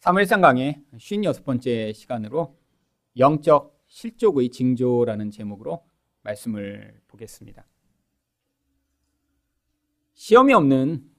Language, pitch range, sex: Korean, 110-170 Hz, male